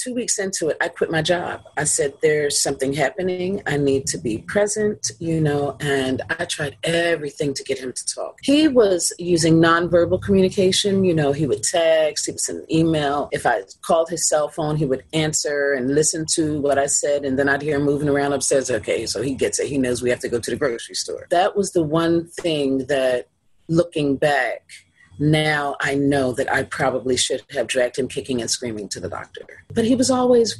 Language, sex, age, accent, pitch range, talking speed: English, female, 40-59, American, 135-170 Hz, 215 wpm